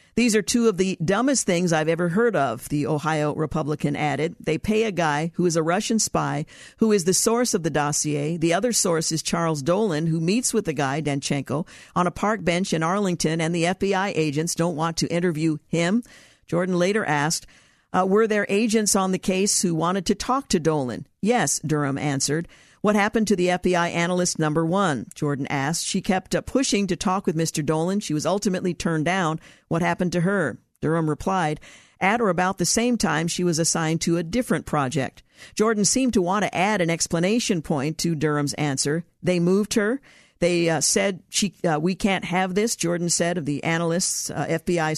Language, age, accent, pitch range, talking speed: English, 50-69, American, 160-200 Hz, 200 wpm